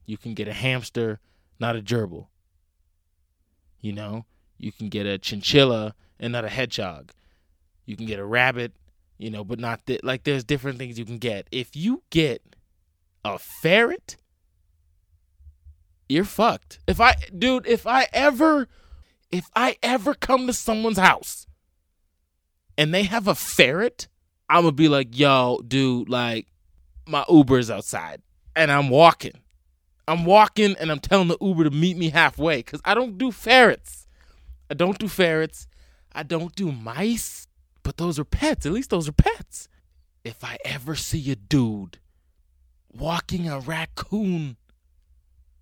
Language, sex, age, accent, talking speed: English, male, 20-39, American, 155 wpm